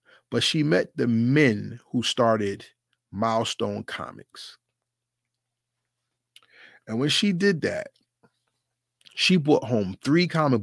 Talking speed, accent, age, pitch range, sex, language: 105 wpm, American, 30-49, 105-130 Hz, male, English